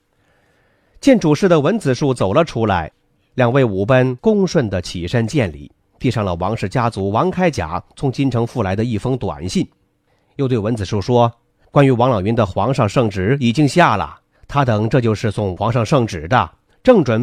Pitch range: 110-155 Hz